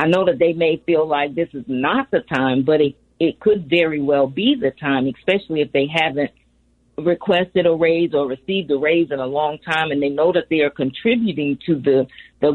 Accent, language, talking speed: American, English, 220 wpm